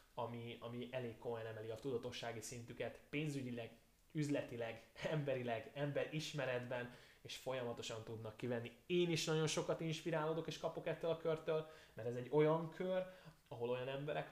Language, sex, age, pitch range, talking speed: Hungarian, male, 10-29, 115-140 Hz, 145 wpm